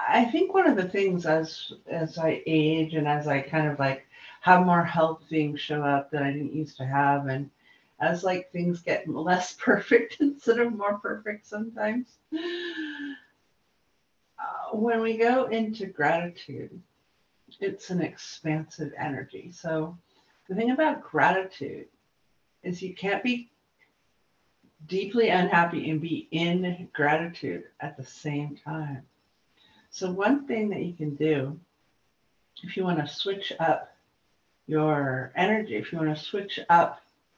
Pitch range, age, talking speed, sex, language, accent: 155-225 Hz, 50-69, 145 wpm, female, English, American